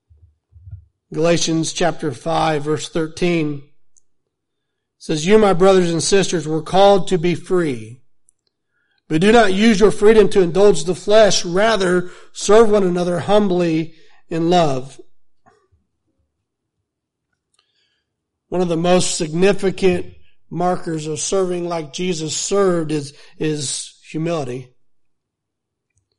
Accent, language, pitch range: American, English, 155-195 Hz